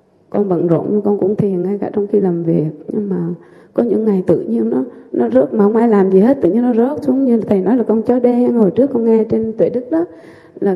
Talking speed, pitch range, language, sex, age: 275 wpm, 180-230 Hz, Vietnamese, female, 20-39